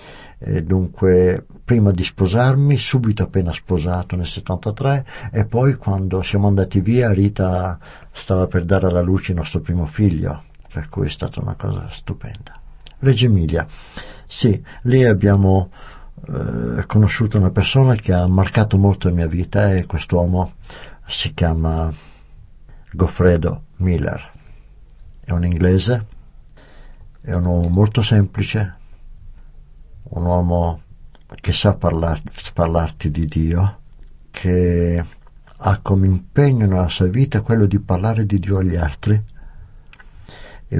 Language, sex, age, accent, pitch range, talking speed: Italian, male, 60-79, native, 85-105 Hz, 125 wpm